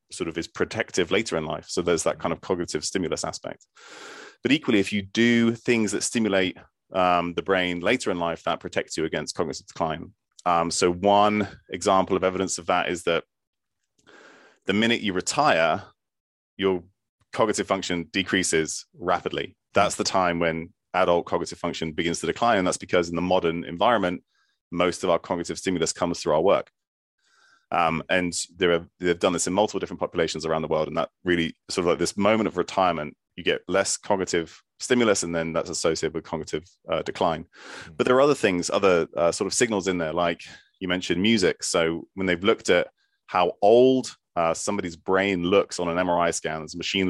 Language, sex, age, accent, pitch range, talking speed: English, male, 30-49, British, 85-105 Hz, 190 wpm